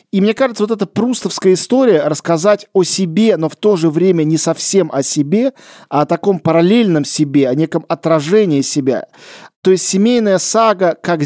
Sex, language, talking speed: male, Russian, 175 wpm